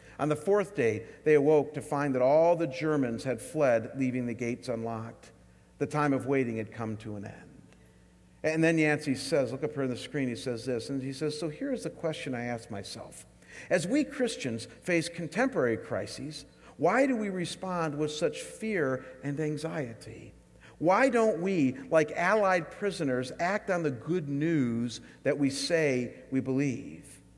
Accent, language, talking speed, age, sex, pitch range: American, English, 180 wpm, 50-69, male, 125-180 Hz